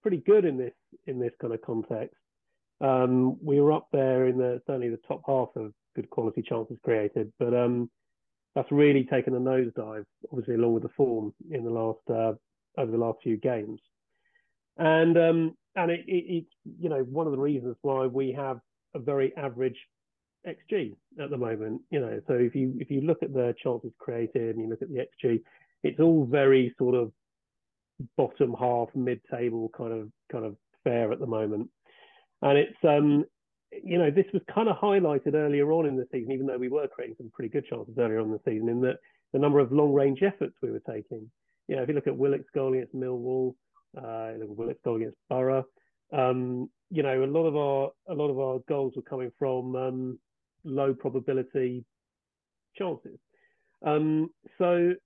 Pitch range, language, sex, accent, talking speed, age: 120-150 Hz, English, male, British, 195 wpm, 30-49